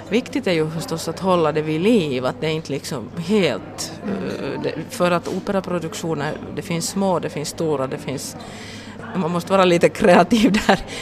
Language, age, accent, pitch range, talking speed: Swedish, 30-49, Finnish, 150-175 Hz, 175 wpm